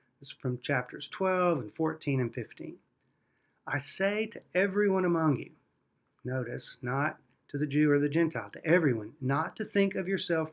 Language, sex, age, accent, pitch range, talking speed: English, male, 40-59, American, 130-175 Hz, 165 wpm